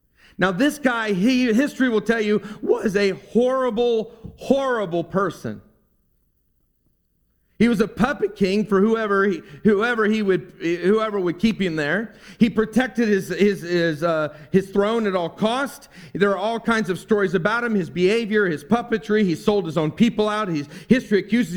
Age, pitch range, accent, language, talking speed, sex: 40-59, 180-230 Hz, American, English, 165 wpm, male